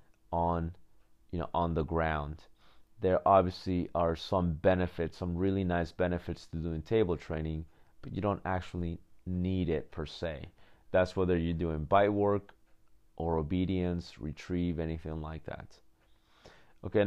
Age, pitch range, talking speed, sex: 30-49, 85-95 Hz, 140 wpm, male